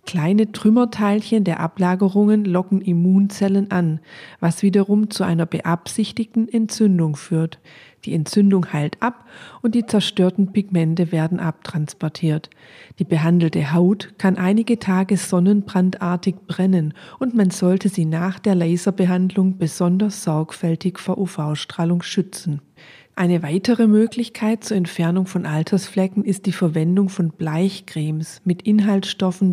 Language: German